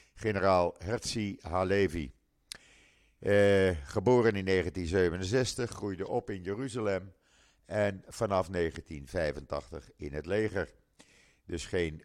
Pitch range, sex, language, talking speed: 90-115 Hz, male, Dutch, 95 wpm